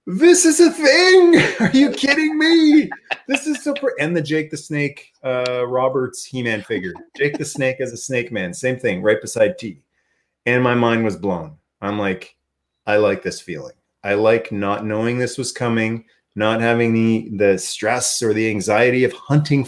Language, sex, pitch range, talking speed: English, male, 100-145 Hz, 185 wpm